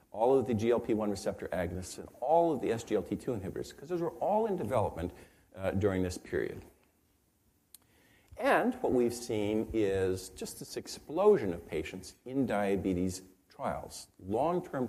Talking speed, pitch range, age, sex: 145 wpm, 95-125 Hz, 50-69, male